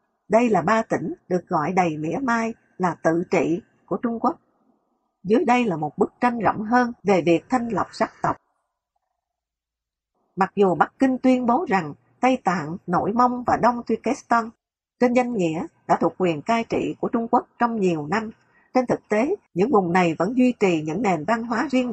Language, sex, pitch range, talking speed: English, female, 185-245 Hz, 195 wpm